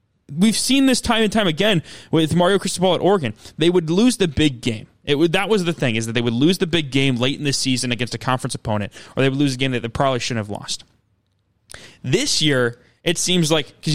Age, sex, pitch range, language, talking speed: 20-39, male, 125-160 Hz, English, 250 wpm